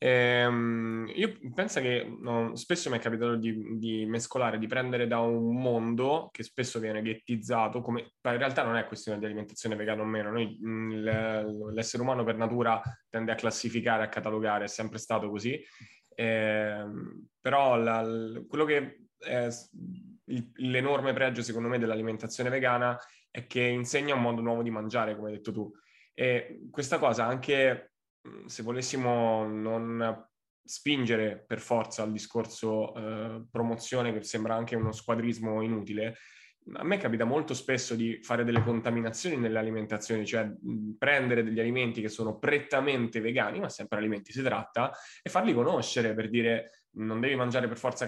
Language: Italian